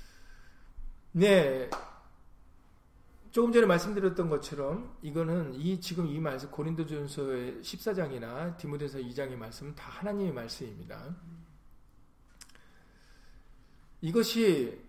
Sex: male